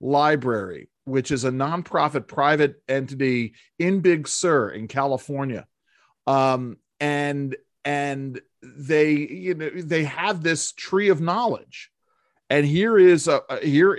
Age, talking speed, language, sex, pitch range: 40-59, 130 wpm, English, male, 125-170 Hz